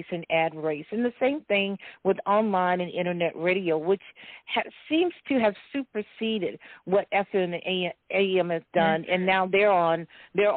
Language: English